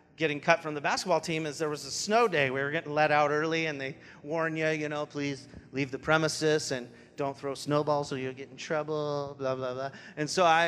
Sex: male